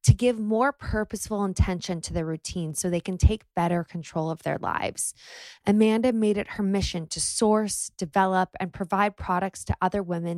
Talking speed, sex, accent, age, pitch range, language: 180 wpm, female, American, 20-39, 170-210 Hz, English